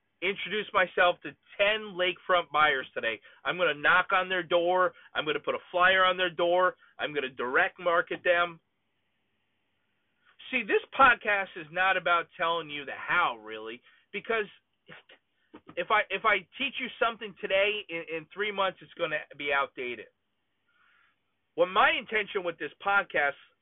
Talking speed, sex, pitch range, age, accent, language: 165 wpm, male, 155-215 Hz, 30-49, American, English